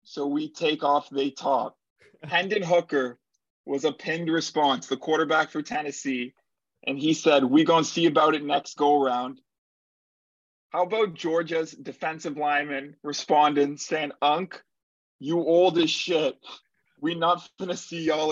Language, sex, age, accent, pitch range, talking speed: English, male, 20-39, American, 135-160 Hz, 150 wpm